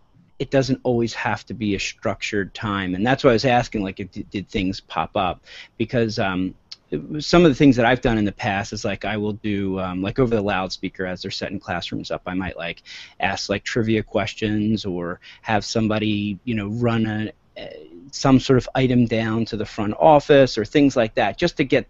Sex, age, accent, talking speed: male, 30-49, American, 215 wpm